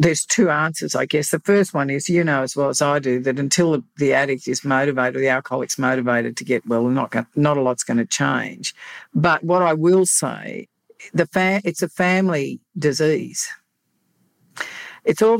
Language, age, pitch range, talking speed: English, 50-69, 130-155 Hz, 195 wpm